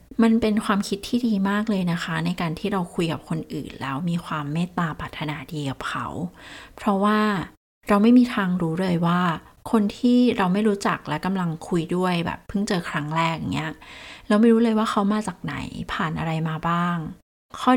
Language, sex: Thai, female